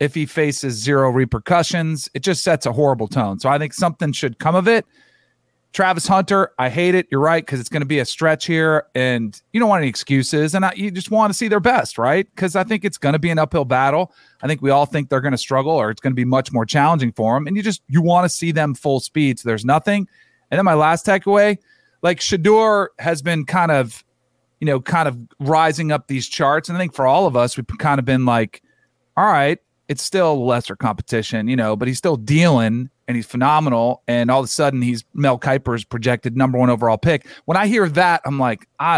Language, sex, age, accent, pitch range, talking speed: English, male, 40-59, American, 125-170 Hz, 240 wpm